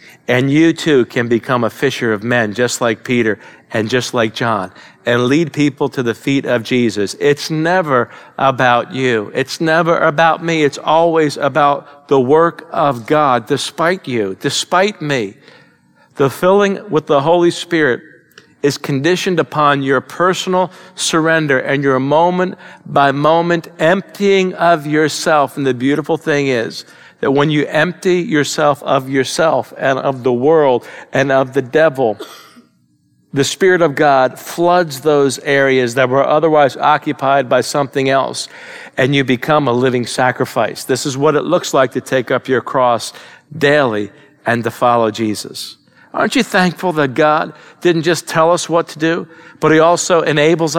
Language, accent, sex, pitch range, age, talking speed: English, American, male, 130-160 Hz, 50-69, 160 wpm